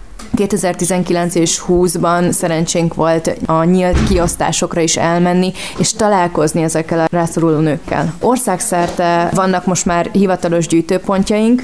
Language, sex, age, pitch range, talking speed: Hungarian, female, 20-39, 175-195 Hz, 115 wpm